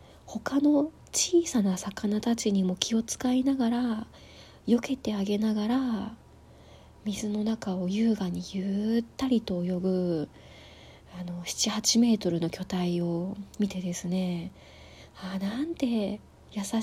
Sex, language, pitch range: female, Japanese, 185-235 Hz